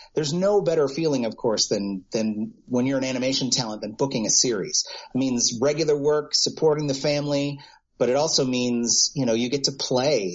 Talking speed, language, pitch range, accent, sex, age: 195 wpm, English, 115-145 Hz, American, male, 30-49